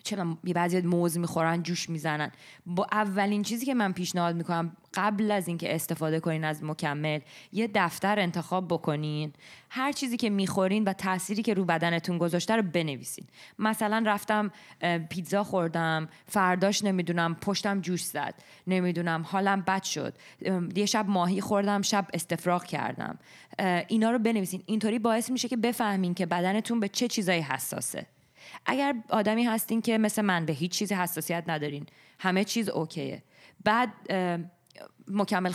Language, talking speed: Persian, 150 wpm